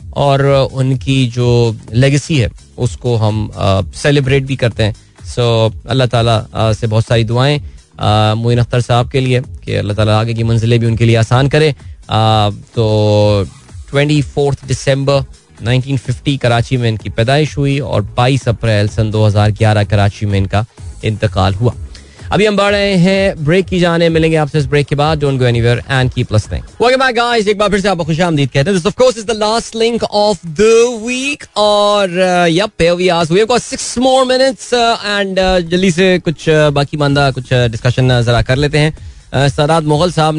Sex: male